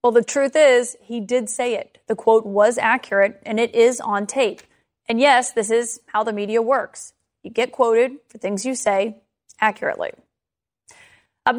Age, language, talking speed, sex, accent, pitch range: 30-49, English, 175 wpm, female, American, 220-265 Hz